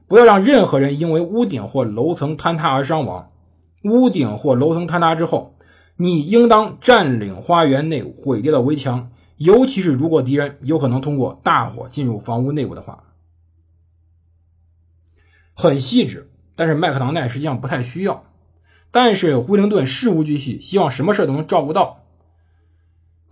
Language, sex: Chinese, male